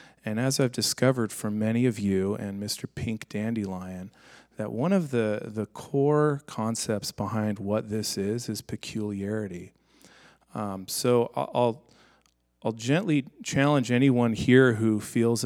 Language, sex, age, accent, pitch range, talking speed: English, male, 40-59, American, 105-130 Hz, 135 wpm